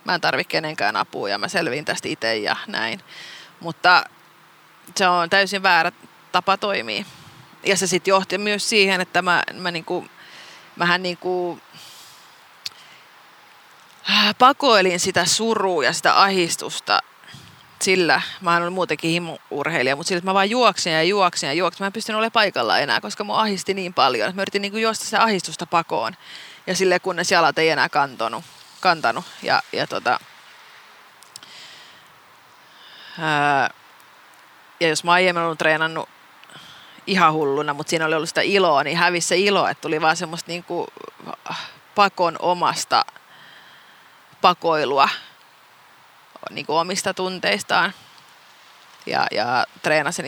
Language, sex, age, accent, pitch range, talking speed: Finnish, female, 30-49, native, 160-195 Hz, 130 wpm